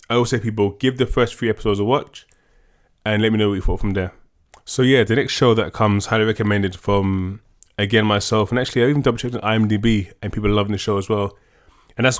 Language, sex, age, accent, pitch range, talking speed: English, male, 20-39, British, 105-125 Hz, 240 wpm